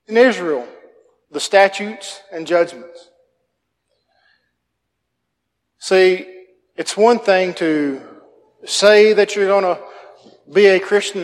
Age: 40-59